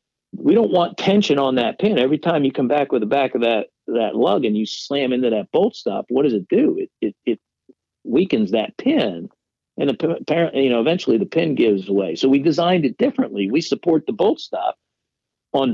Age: 50-69